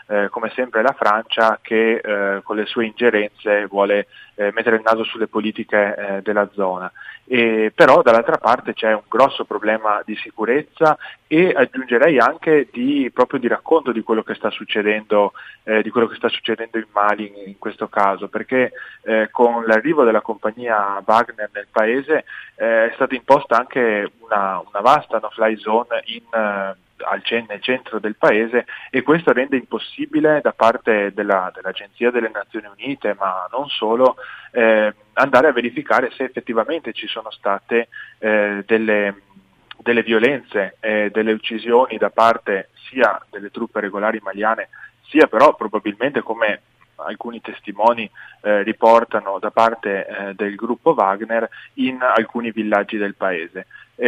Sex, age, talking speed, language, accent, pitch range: male, 20-39, 150 wpm, Italian, native, 105-115 Hz